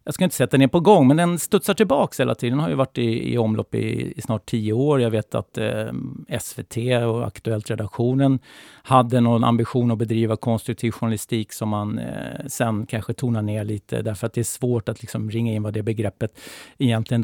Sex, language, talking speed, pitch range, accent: male, English, 200 wpm, 110-130 Hz, Swedish